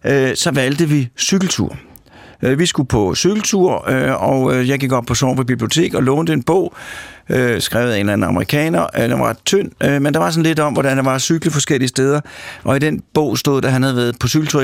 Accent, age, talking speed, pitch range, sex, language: native, 60-79, 220 wpm, 110-150 Hz, male, Danish